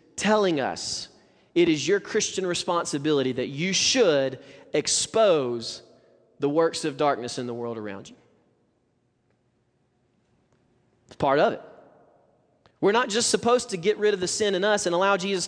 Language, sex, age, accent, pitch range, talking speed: English, male, 30-49, American, 145-200 Hz, 150 wpm